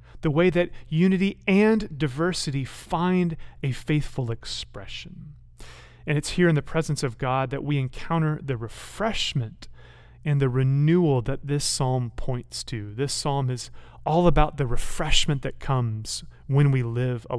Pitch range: 120-155 Hz